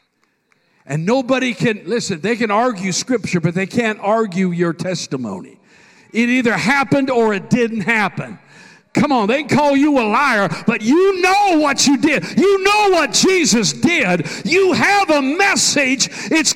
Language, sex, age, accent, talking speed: English, male, 50-69, American, 160 wpm